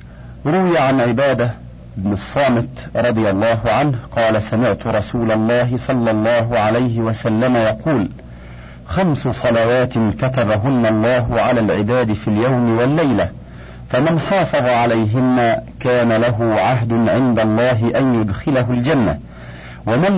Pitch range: 105-140 Hz